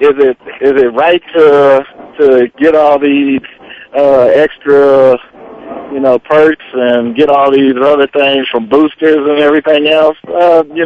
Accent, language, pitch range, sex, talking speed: American, English, 125-150 Hz, male, 155 wpm